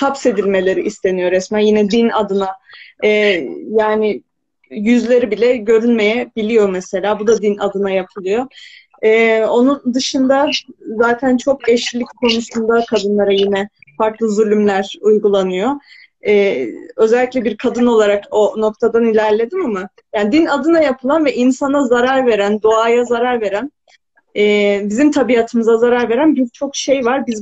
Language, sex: Turkish, female